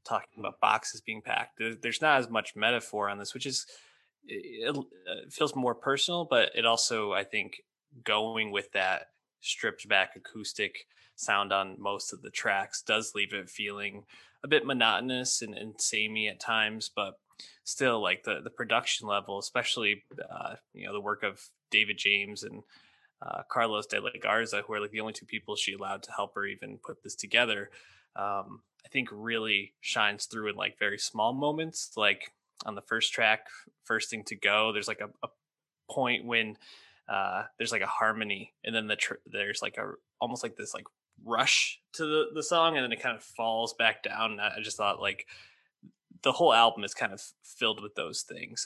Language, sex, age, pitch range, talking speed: English, male, 20-39, 105-120 Hz, 190 wpm